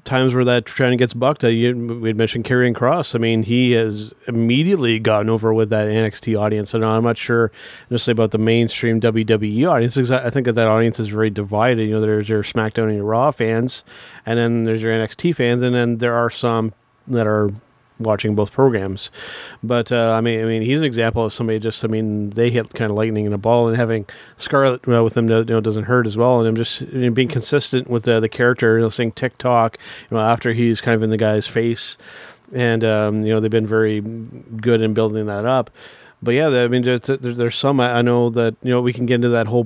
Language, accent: English, American